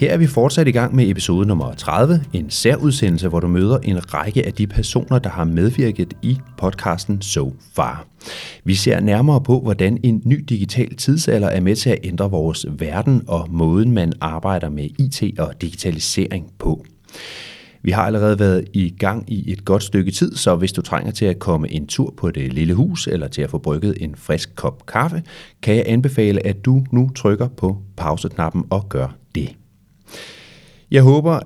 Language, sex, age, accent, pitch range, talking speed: Danish, male, 30-49, native, 90-125 Hz, 190 wpm